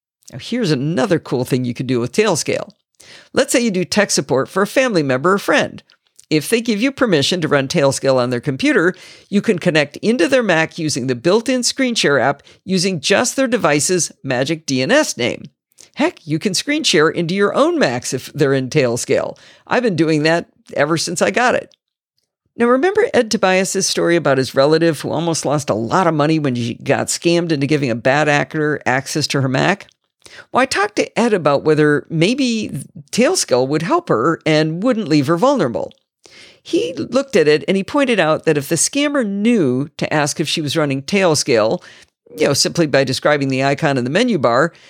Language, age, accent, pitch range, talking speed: English, 50-69, American, 145-220 Hz, 200 wpm